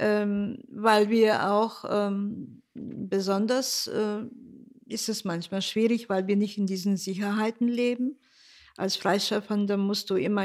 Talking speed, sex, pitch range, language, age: 130 wpm, female, 195-230 Hz, English, 50-69